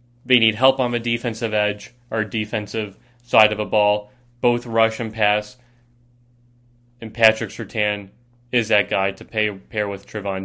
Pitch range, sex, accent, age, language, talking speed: 110-125 Hz, male, American, 20-39, English, 155 wpm